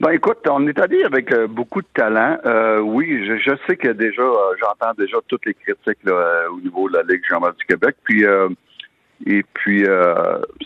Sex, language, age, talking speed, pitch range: male, French, 60-79, 210 wpm, 100-150 Hz